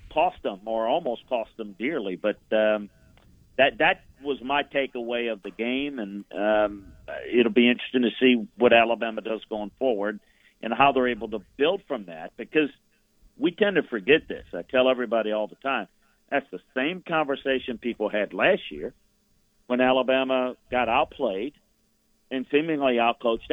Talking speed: 165 wpm